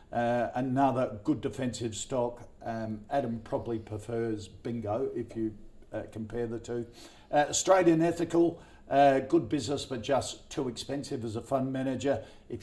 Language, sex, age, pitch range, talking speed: English, male, 50-69, 115-140 Hz, 145 wpm